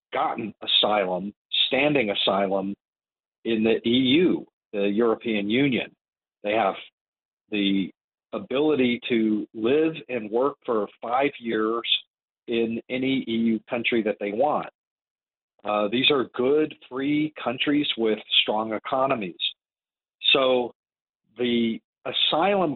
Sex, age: male, 50-69